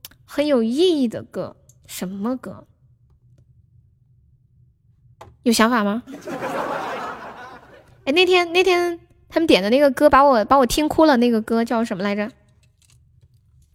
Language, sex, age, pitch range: Chinese, female, 10-29, 210-290 Hz